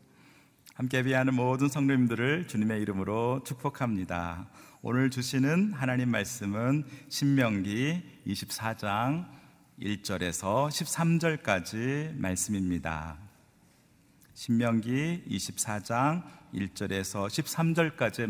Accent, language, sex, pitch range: native, Korean, male, 105-140 Hz